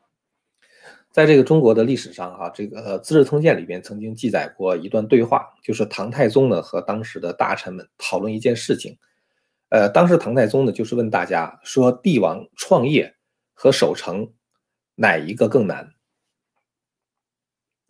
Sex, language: male, Chinese